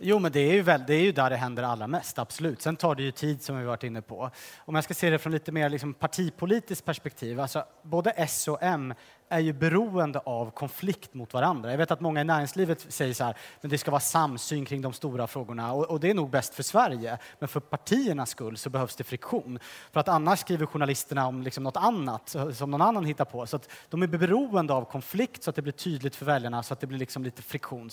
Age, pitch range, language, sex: 30-49, 130-180 Hz, Swedish, male